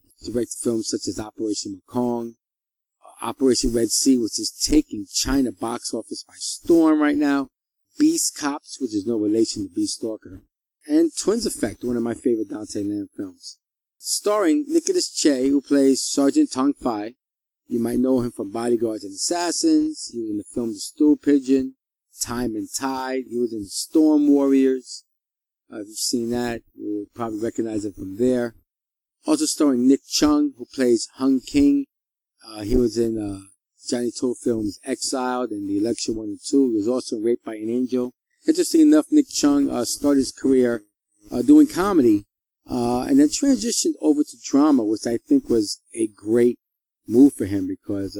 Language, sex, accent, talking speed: English, male, American, 175 wpm